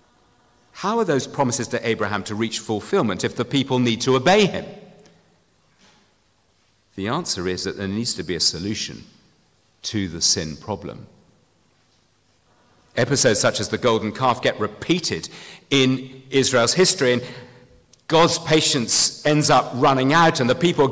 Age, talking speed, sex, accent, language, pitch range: 50-69, 145 wpm, male, British, English, 115-170 Hz